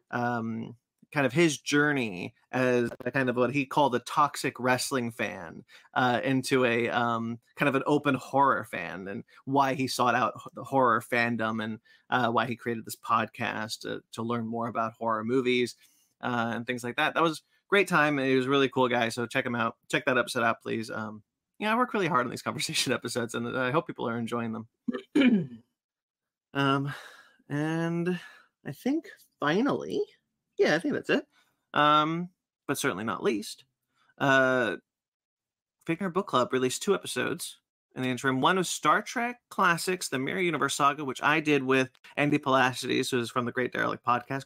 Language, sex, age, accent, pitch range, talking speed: English, male, 30-49, American, 120-155 Hz, 185 wpm